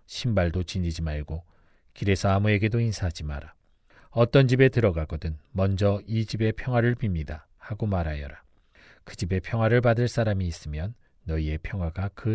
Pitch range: 90-120 Hz